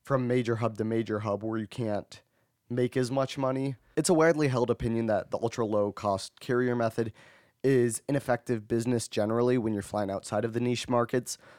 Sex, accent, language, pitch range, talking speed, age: male, American, English, 110-130 Hz, 180 wpm, 20-39